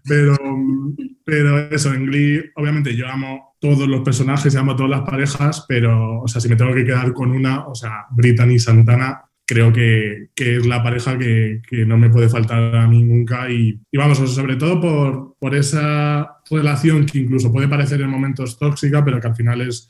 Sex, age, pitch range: male, 20-39, 115-135 Hz